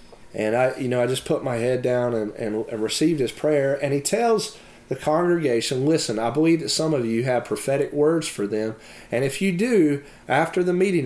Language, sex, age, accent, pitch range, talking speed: English, male, 30-49, American, 115-150 Hz, 210 wpm